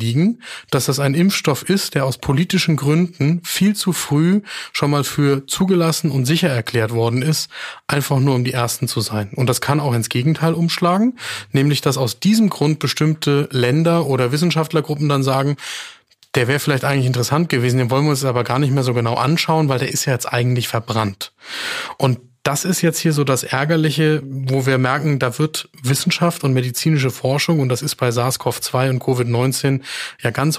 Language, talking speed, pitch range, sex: German, 190 wpm, 125-150 Hz, male